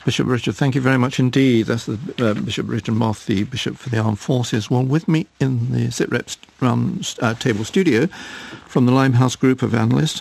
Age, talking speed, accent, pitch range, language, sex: 50-69, 210 wpm, British, 110-130 Hz, English, male